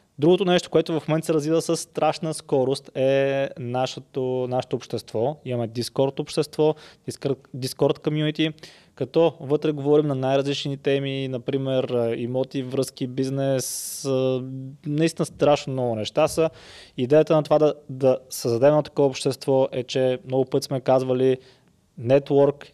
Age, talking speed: 20-39, 125 wpm